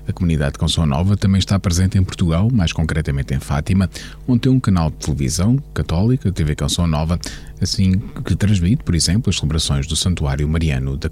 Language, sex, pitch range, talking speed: Portuguese, male, 80-95 Hz, 190 wpm